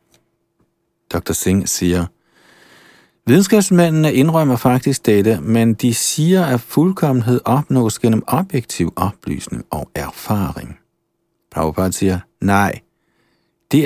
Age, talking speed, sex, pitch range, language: 50-69, 95 wpm, male, 95-135 Hz, Danish